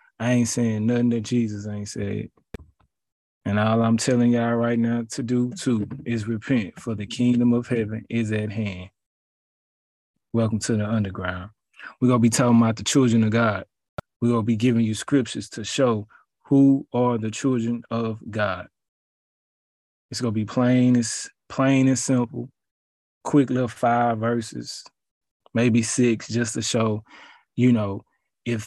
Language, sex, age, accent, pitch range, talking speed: English, male, 20-39, American, 110-125 Hz, 160 wpm